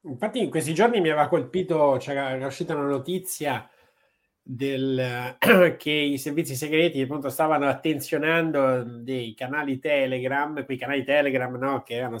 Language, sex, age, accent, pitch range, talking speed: Italian, male, 20-39, native, 125-150 Hz, 145 wpm